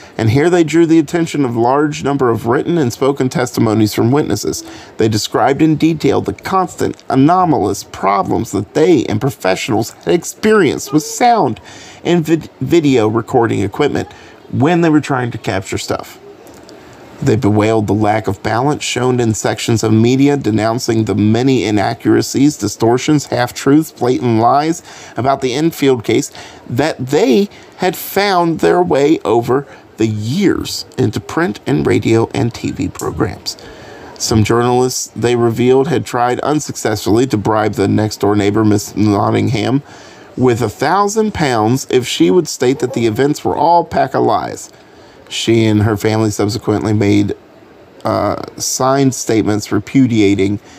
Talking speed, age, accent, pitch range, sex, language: 145 wpm, 40-59, American, 105-145 Hz, male, English